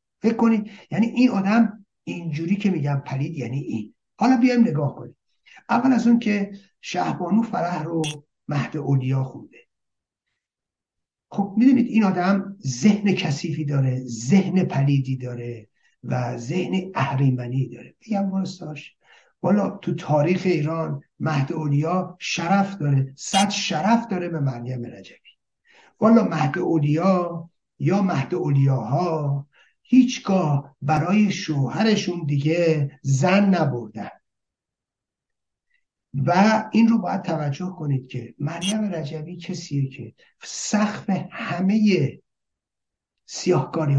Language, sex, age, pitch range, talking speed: Persian, male, 60-79, 140-200 Hz, 110 wpm